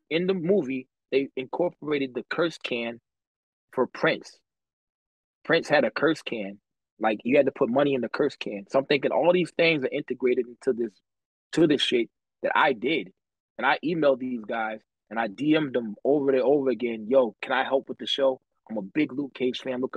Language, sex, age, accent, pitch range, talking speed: English, male, 20-39, American, 120-150 Hz, 205 wpm